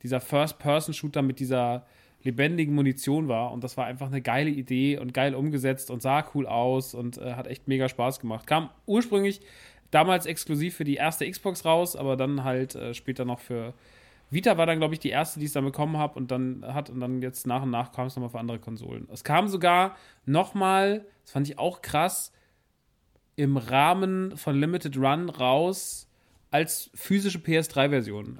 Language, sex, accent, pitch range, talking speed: German, male, German, 125-155 Hz, 190 wpm